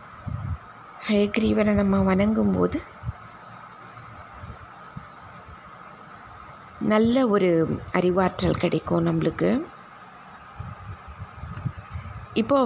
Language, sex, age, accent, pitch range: Tamil, female, 20-39, native, 180-230 Hz